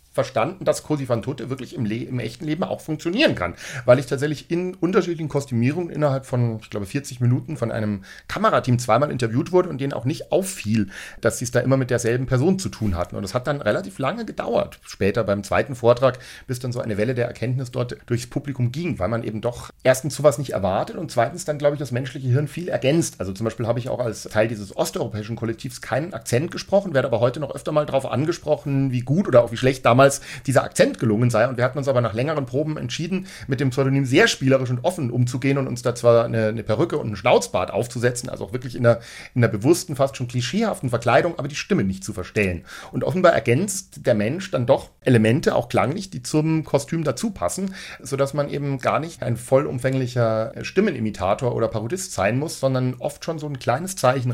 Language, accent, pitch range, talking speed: German, German, 115-145 Hz, 220 wpm